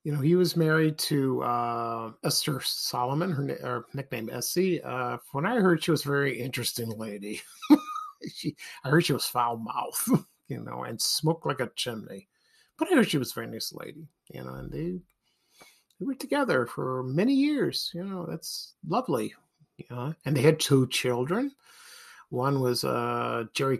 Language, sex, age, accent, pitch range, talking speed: English, male, 50-69, American, 125-175 Hz, 180 wpm